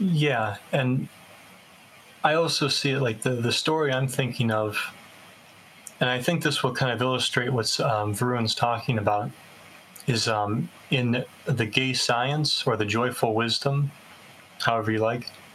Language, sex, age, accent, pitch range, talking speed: English, male, 30-49, American, 110-135 Hz, 150 wpm